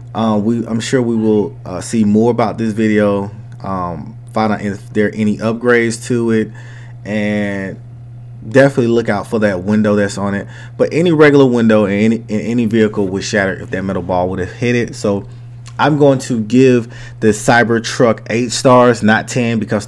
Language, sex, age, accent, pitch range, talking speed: English, male, 30-49, American, 105-120 Hz, 195 wpm